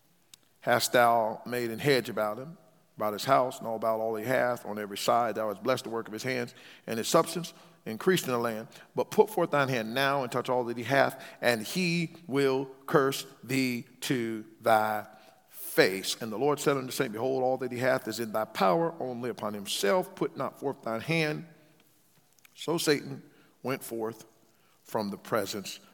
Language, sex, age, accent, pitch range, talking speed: English, male, 50-69, American, 115-155 Hz, 195 wpm